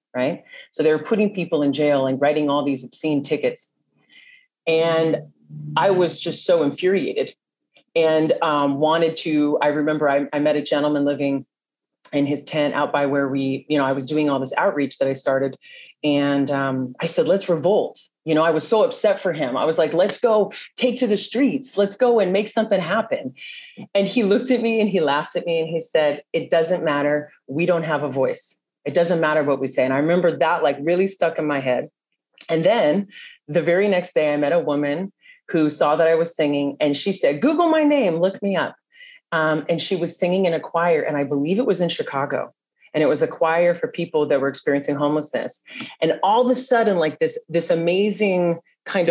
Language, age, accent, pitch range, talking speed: English, 30-49, American, 145-195 Hz, 215 wpm